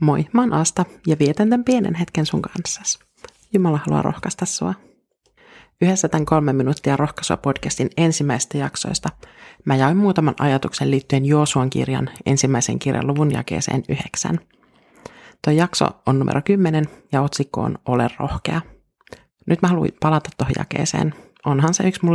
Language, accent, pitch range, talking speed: Finnish, native, 140-170 Hz, 150 wpm